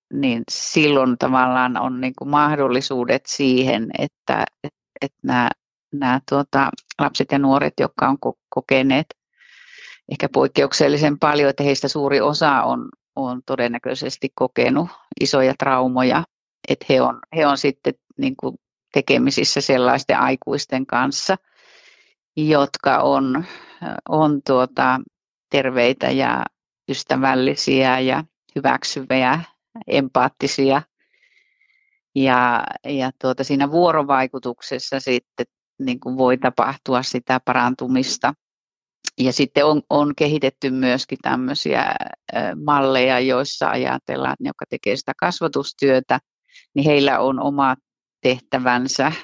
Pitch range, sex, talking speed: 130-145 Hz, female, 105 wpm